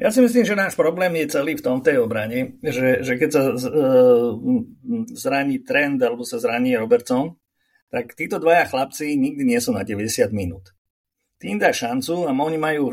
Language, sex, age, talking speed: Slovak, male, 50-69, 185 wpm